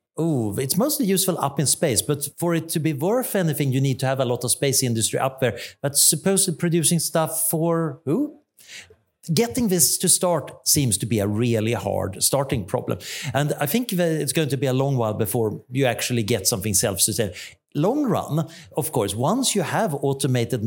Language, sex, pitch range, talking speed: English, male, 120-160 Hz, 190 wpm